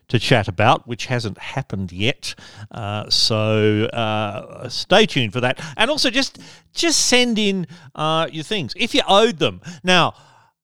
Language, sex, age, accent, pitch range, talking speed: English, male, 40-59, Australian, 115-170 Hz, 160 wpm